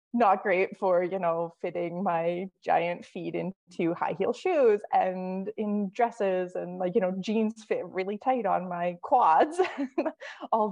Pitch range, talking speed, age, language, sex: 170-215 Hz, 155 wpm, 20-39, English, female